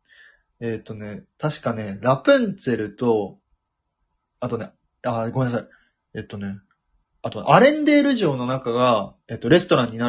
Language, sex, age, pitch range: Japanese, male, 20-39, 105-150 Hz